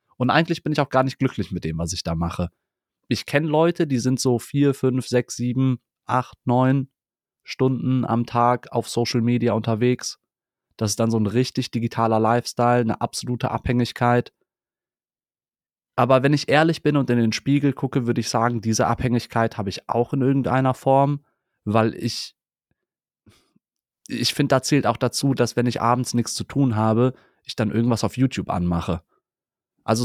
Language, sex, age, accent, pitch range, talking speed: German, male, 30-49, German, 115-130 Hz, 175 wpm